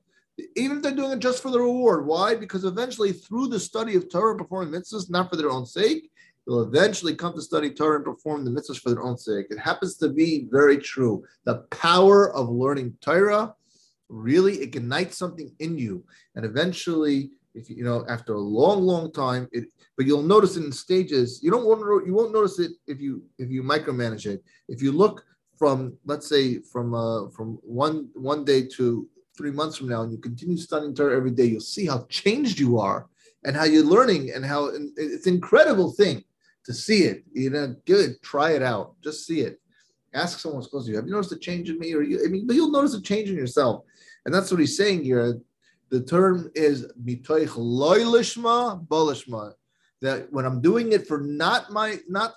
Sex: male